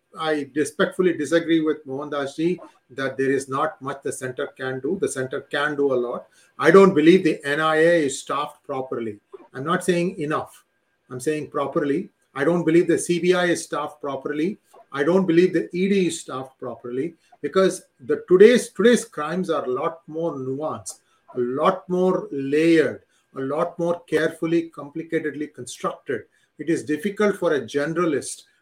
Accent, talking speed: Indian, 160 wpm